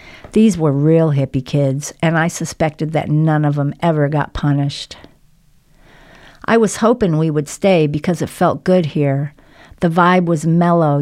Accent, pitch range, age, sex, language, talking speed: American, 145-165 Hz, 50-69, female, English, 165 wpm